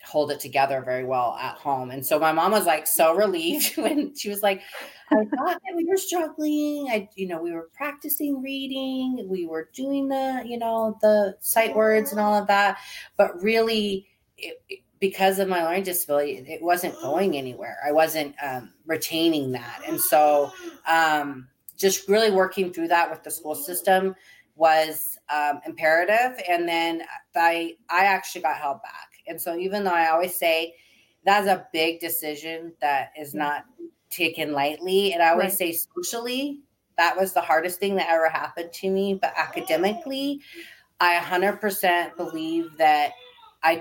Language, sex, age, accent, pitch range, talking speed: English, female, 30-49, American, 160-215 Hz, 165 wpm